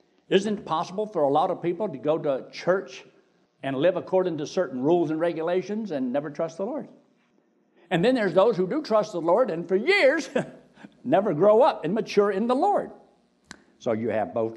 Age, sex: 60-79, male